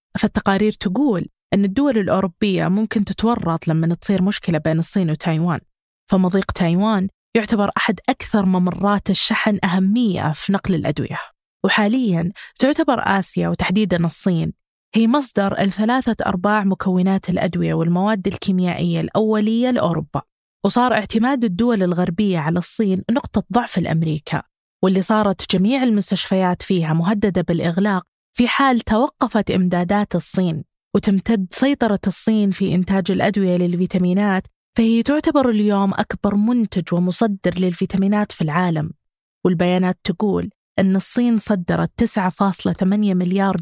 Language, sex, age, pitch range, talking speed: Arabic, female, 20-39, 180-215 Hz, 115 wpm